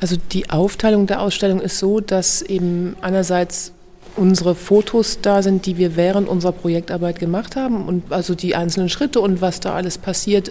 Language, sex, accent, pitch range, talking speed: German, female, German, 175-190 Hz, 175 wpm